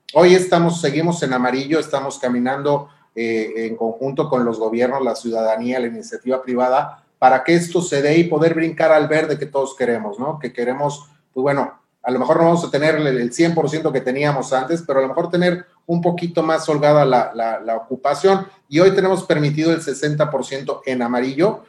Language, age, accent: Spanish, 30-49, Mexican